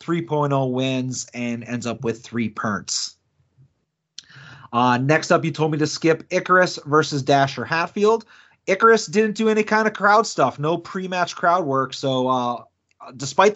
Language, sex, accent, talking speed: English, male, American, 155 wpm